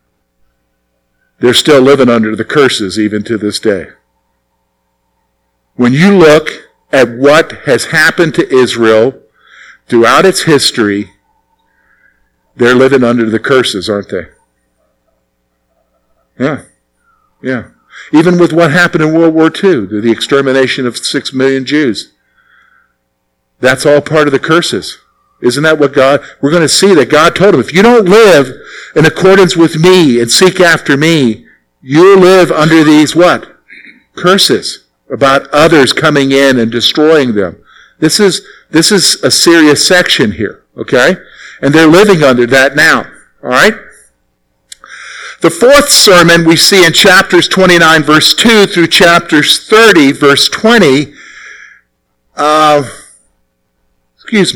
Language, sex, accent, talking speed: English, male, American, 135 wpm